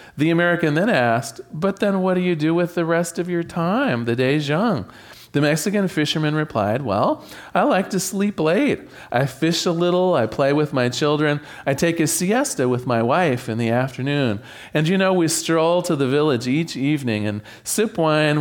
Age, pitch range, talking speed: 40-59, 130-180 Hz, 200 wpm